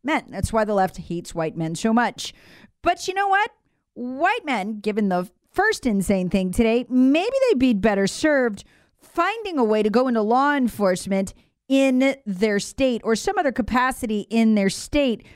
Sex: female